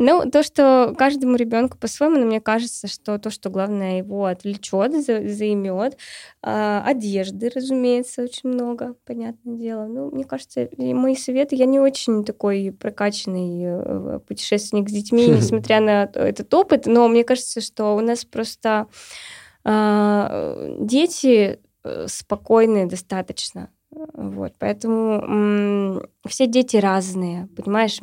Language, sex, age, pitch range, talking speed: Russian, female, 20-39, 205-250 Hz, 120 wpm